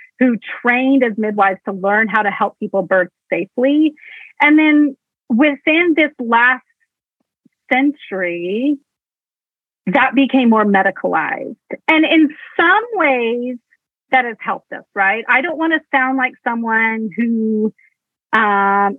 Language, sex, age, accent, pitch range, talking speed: English, female, 30-49, American, 220-285 Hz, 125 wpm